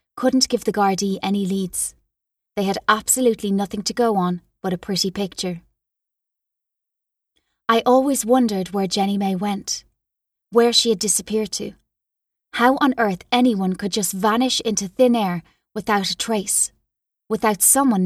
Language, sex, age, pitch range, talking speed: English, female, 20-39, 195-225 Hz, 145 wpm